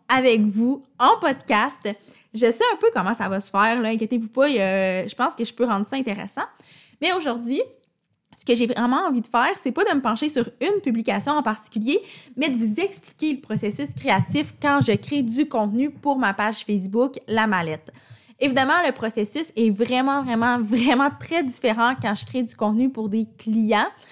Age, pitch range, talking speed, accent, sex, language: 20-39, 210-265 Hz, 195 wpm, Canadian, female, French